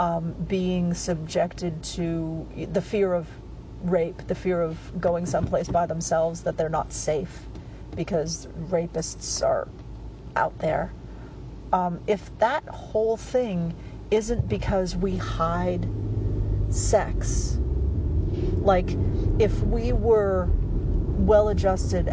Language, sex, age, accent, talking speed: English, female, 40-59, American, 105 wpm